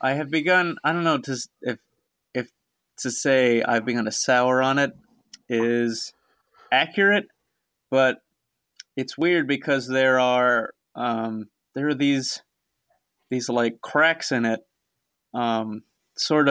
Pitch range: 115-135 Hz